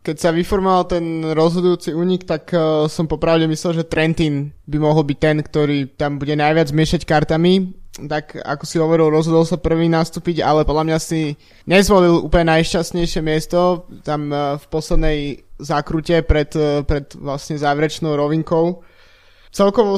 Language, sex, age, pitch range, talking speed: Slovak, male, 20-39, 150-170 Hz, 145 wpm